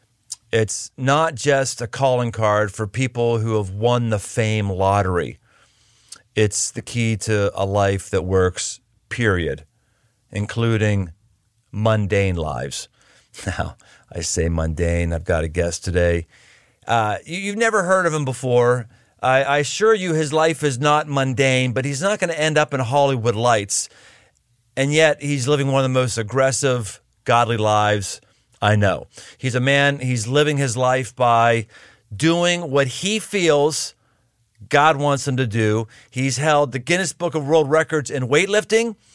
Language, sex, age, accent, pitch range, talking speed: English, male, 40-59, American, 110-145 Hz, 155 wpm